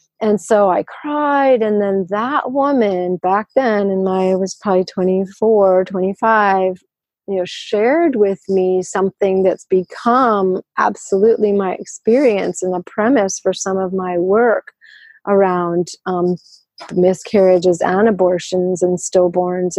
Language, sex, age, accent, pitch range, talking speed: English, female, 30-49, American, 175-205 Hz, 125 wpm